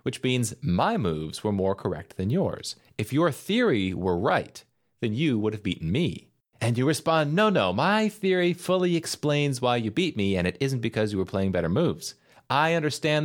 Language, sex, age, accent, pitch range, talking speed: English, male, 30-49, American, 100-150 Hz, 200 wpm